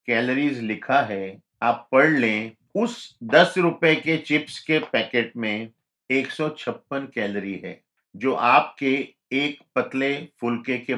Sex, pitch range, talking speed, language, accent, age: male, 130-160 Hz, 135 wpm, Hindi, native, 50-69